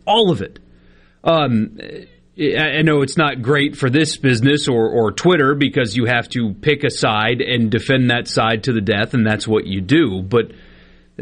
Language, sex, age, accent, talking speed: English, male, 40-59, American, 185 wpm